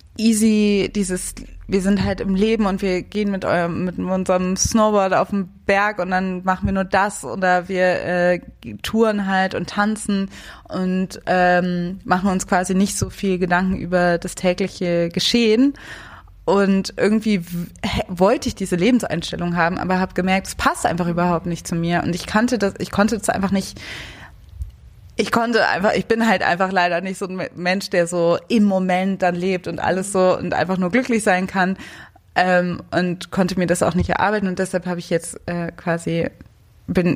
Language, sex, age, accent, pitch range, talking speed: German, female, 20-39, German, 175-195 Hz, 185 wpm